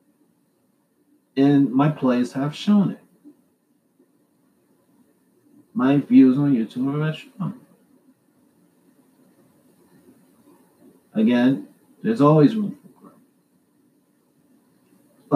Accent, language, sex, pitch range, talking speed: American, English, male, 130-215 Hz, 75 wpm